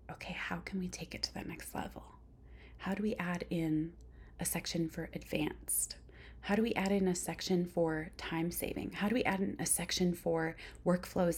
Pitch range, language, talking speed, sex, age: 155-185 Hz, English, 200 wpm, female, 30-49